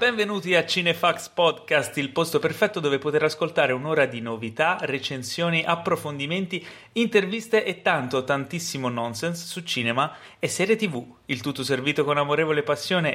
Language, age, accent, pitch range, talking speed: Italian, 30-49, native, 130-175 Hz, 140 wpm